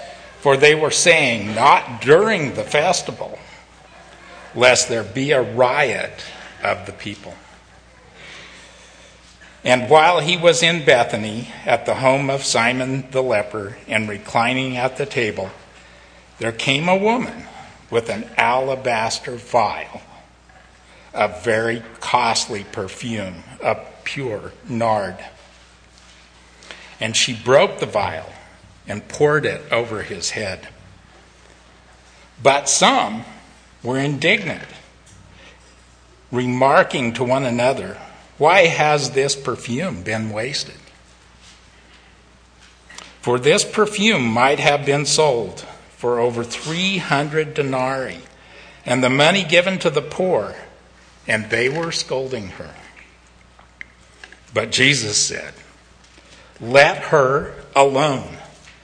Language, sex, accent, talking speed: English, male, American, 105 wpm